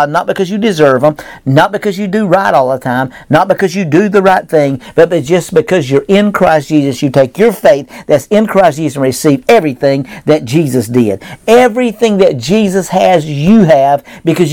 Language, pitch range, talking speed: English, 140-185 Hz, 200 wpm